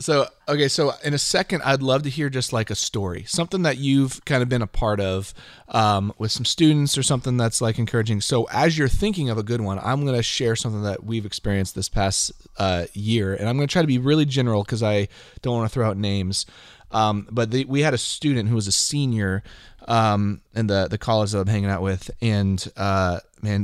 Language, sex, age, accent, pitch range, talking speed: English, male, 30-49, American, 100-130 Hz, 235 wpm